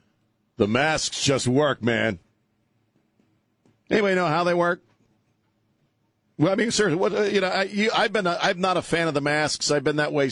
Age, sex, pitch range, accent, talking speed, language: 50-69, male, 110-160 Hz, American, 175 wpm, English